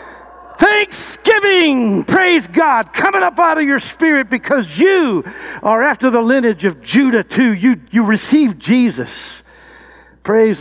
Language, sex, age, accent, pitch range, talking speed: English, male, 60-79, American, 140-210 Hz, 130 wpm